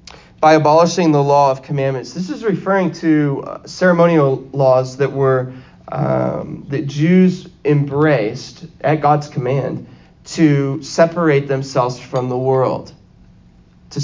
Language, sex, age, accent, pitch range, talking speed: English, male, 20-39, American, 130-165 Hz, 120 wpm